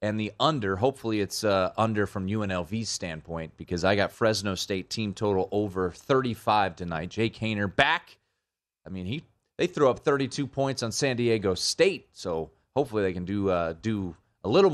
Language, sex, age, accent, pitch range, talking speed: English, male, 30-49, American, 95-125 Hz, 180 wpm